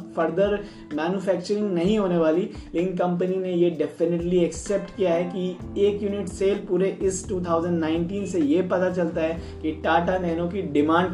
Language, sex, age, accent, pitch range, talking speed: Hindi, male, 20-39, native, 175-210 Hz, 155 wpm